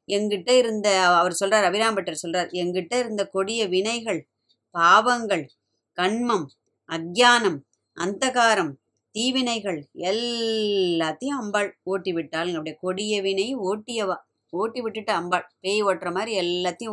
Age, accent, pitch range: 20-39, native, 190-230 Hz